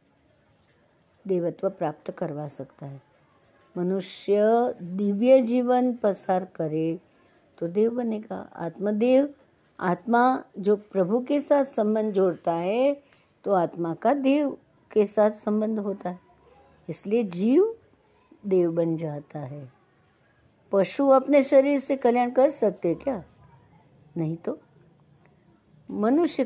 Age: 60-79